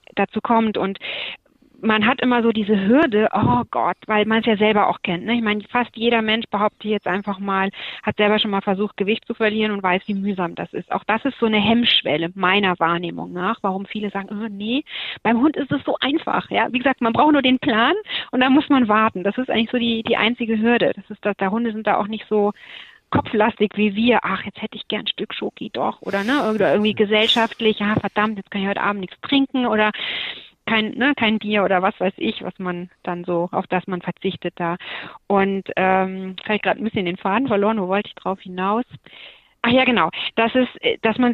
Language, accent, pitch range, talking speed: German, German, 195-230 Hz, 230 wpm